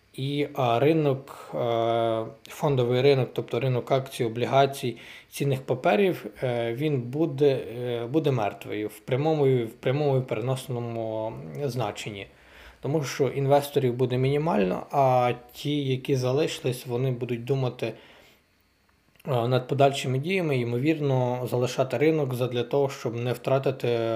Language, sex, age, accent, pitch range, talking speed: Ukrainian, male, 20-39, native, 125-145 Hz, 105 wpm